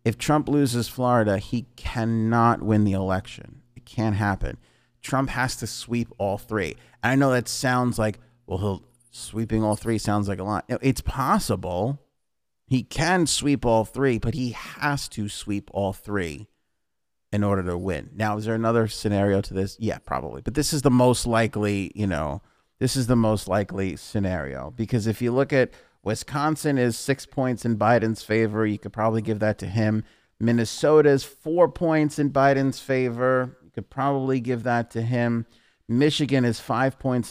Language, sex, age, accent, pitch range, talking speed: English, male, 30-49, American, 105-125 Hz, 180 wpm